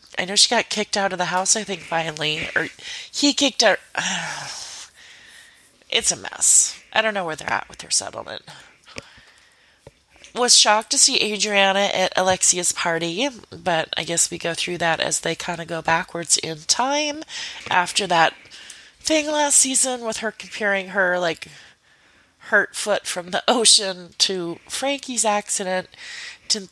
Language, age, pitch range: English, 30-49, 170-220 Hz